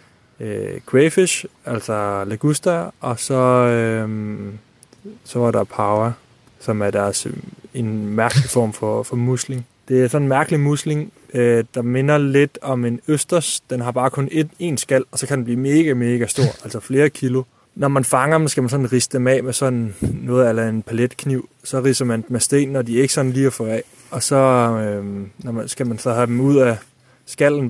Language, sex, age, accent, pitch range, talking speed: Danish, male, 20-39, native, 120-140 Hz, 195 wpm